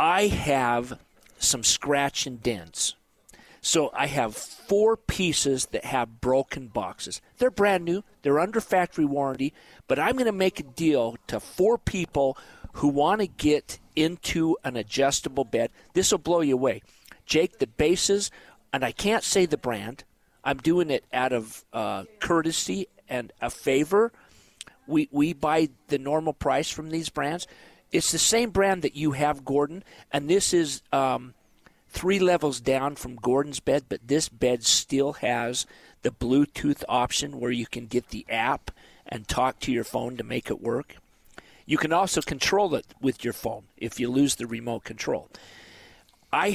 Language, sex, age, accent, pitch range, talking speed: English, male, 40-59, American, 125-170 Hz, 165 wpm